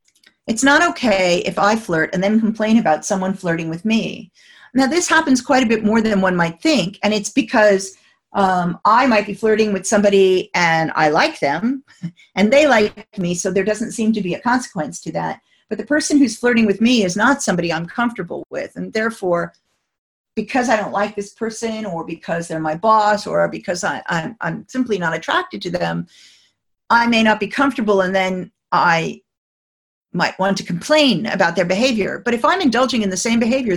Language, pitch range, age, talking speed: English, 185-240 Hz, 50-69, 195 wpm